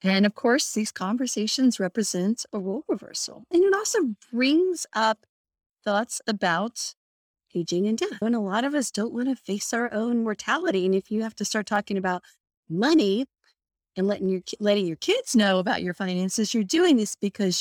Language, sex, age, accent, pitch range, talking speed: English, female, 40-59, American, 175-225 Hz, 185 wpm